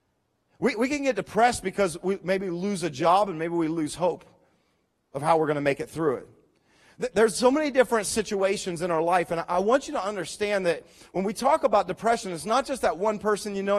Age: 40-59